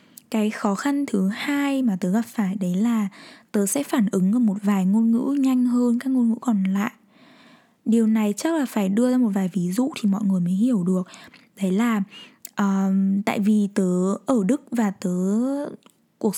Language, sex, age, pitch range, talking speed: Vietnamese, female, 10-29, 205-255 Hz, 200 wpm